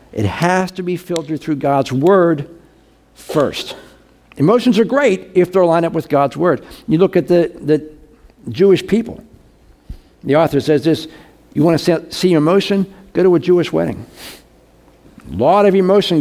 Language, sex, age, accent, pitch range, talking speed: English, male, 60-79, American, 145-195 Hz, 165 wpm